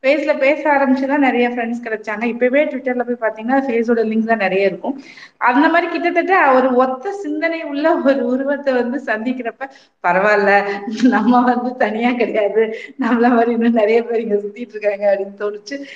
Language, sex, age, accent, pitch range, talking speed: Tamil, female, 30-49, native, 205-265 Hz, 140 wpm